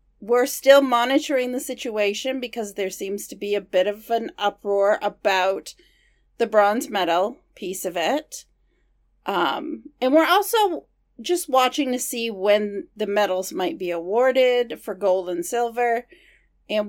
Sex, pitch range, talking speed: female, 210-280 Hz, 145 wpm